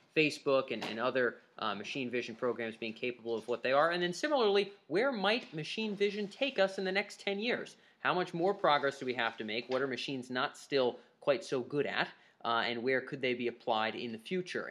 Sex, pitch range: male, 115-175 Hz